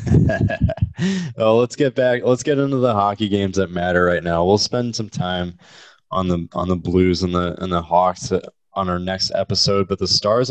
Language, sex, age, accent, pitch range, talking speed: English, male, 20-39, American, 90-105 Hz, 200 wpm